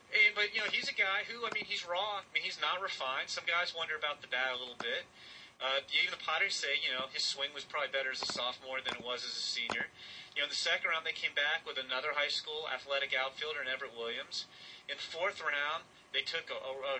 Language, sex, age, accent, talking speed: English, male, 30-49, American, 260 wpm